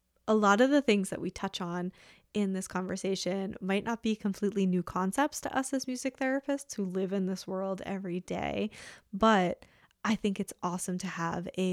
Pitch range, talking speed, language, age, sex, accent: 180-210 Hz, 195 wpm, English, 10-29, female, American